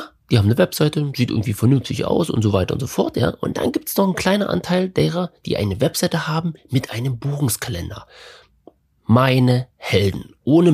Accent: German